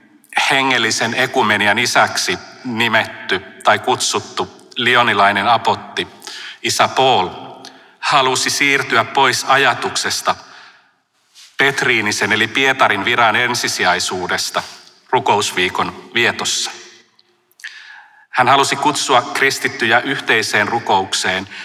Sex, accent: male, native